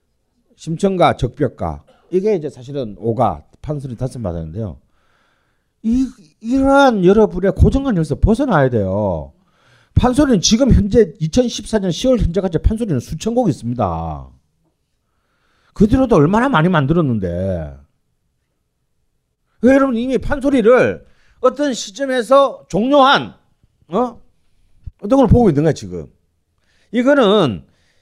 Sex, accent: male, native